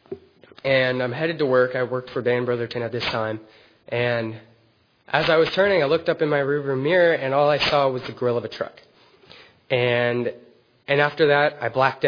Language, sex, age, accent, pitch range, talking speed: English, male, 20-39, American, 120-145 Hz, 205 wpm